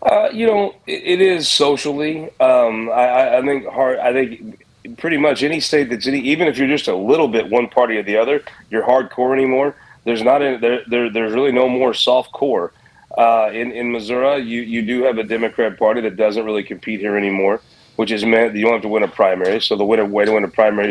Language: English